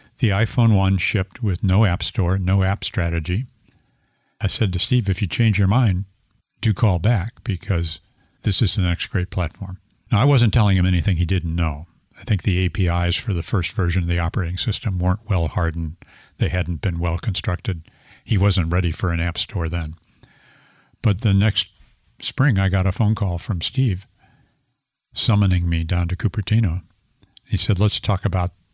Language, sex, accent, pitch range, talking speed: English, male, American, 90-105 Hz, 185 wpm